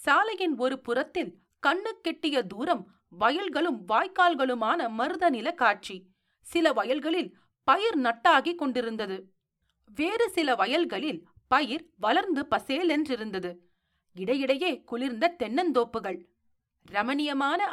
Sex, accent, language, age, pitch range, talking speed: female, native, Tamil, 40-59, 220-335 Hz, 85 wpm